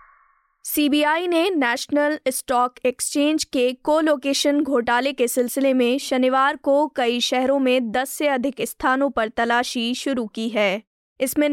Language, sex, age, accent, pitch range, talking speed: Hindi, female, 20-39, native, 250-290 Hz, 135 wpm